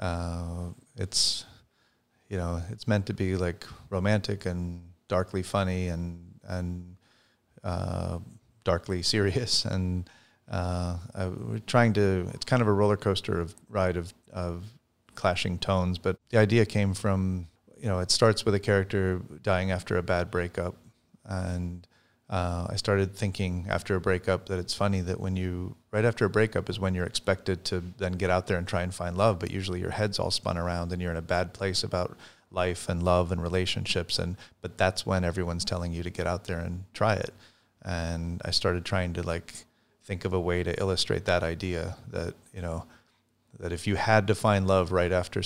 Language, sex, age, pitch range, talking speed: English, male, 30-49, 90-100 Hz, 190 wpm